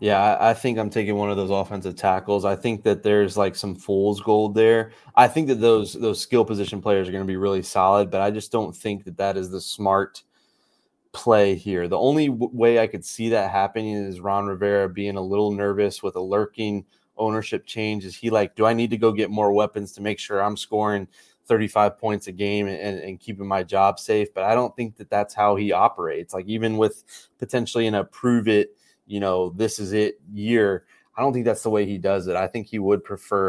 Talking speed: 230 wpm